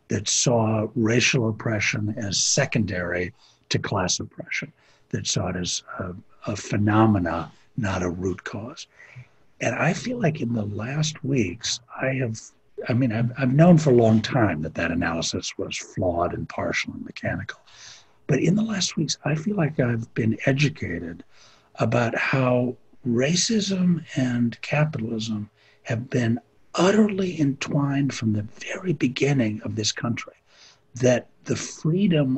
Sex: male